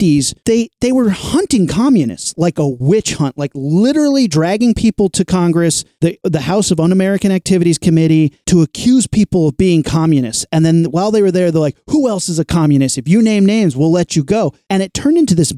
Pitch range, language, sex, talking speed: 155-200 Hz, English, male, 210 wpm